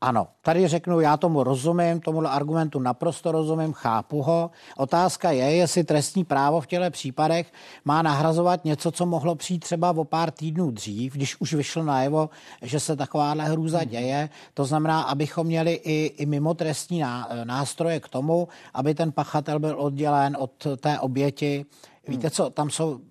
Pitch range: 140-160 Hz